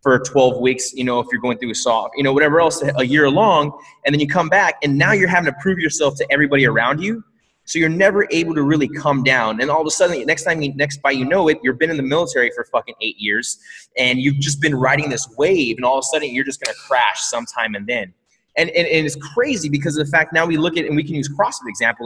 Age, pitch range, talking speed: 20-39, 130-160 Hz, 280 wpm